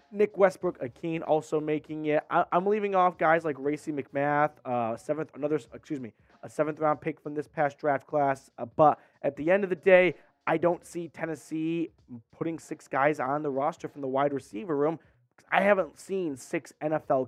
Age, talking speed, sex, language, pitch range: 20-39, 190 wpm, male, English, 140-185 Hz